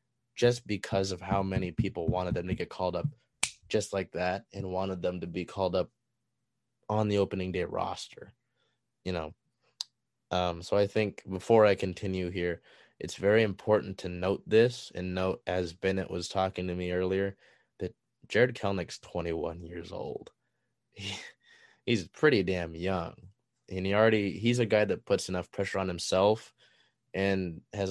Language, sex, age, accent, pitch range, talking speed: English, male, 20-39, American, 90-105 Hz, 165 wpm